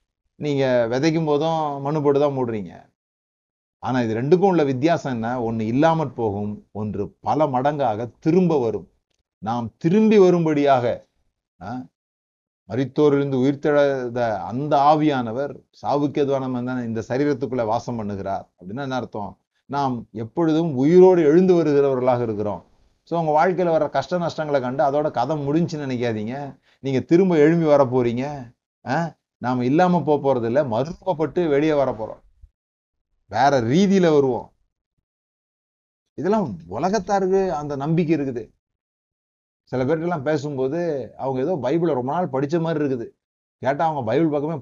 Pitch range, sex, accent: 125-160 Hz, male, native